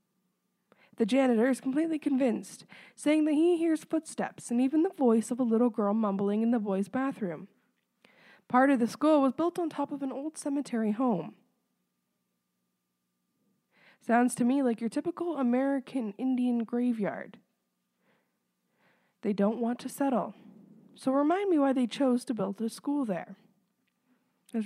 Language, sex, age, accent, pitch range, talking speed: English, female, 20-39, American, 205-260 Hz, 150 wpm